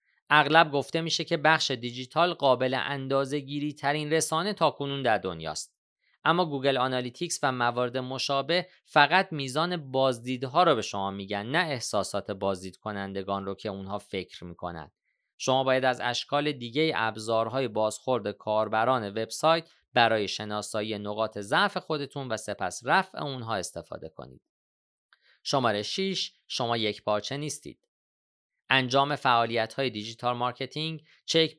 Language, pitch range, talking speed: Persian, 110-145 Hz, 125 wpm